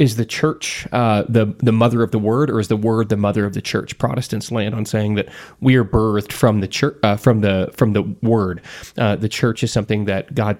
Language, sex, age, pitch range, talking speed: English, male, 20-39, 105-125 Hz, 245 wpm